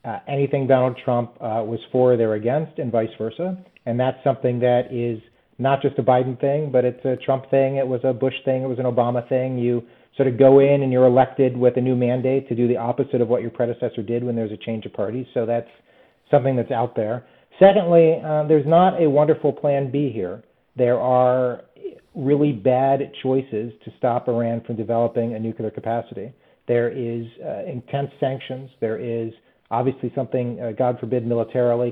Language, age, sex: English, 40-59, male